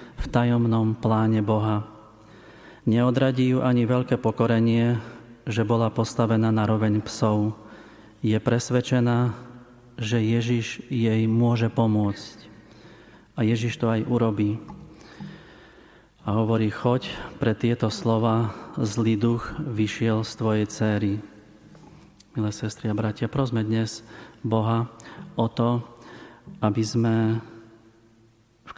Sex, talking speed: male, 105 wpm